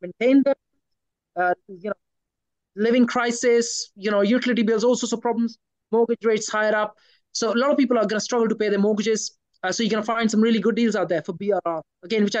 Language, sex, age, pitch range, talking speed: English, male, 30-49, 200-240 Hz, 230 wpm